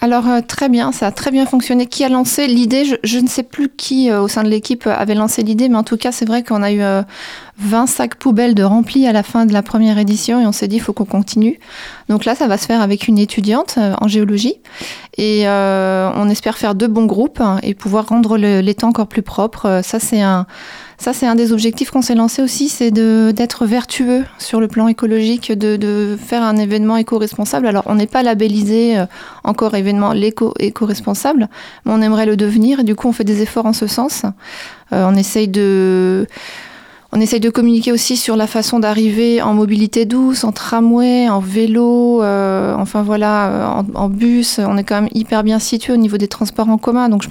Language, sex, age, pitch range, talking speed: French, female, 20-39, 205-235 Hz, 220 wpm